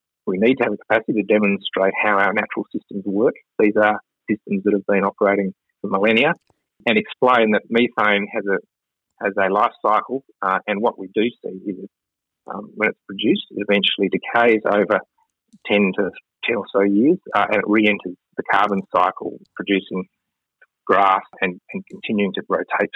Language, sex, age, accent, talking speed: English, male, 30-49, Australian, 175 wpm